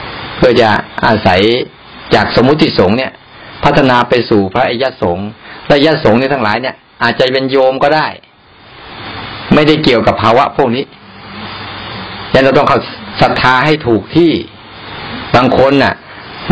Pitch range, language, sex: 105-135 Hz, Thai, male